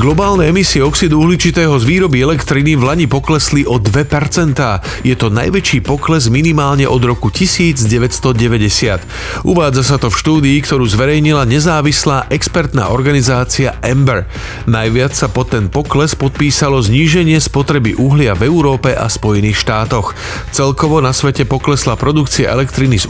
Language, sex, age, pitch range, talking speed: Slovak, male, 40-59, 115-150 Hz, 135 wpm